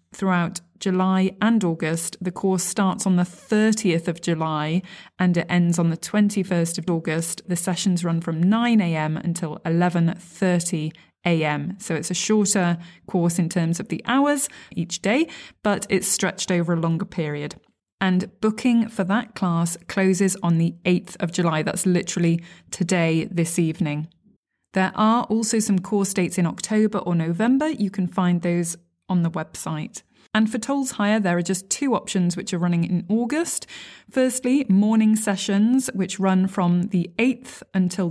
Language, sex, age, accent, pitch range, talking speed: English, female, 20-39, British, 170-205 Hz, 160 wpm